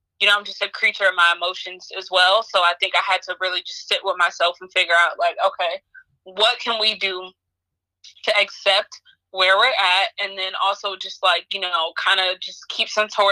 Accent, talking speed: American, 215 wpm